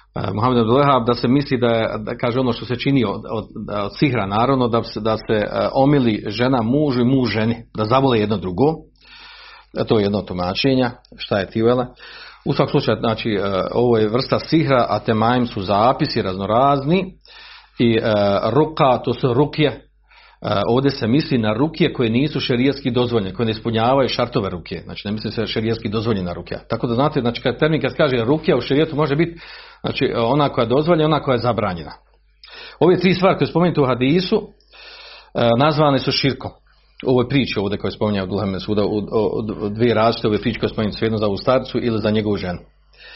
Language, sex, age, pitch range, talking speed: Croatian, male, 40-59, 110-145 Hz, 190 wpm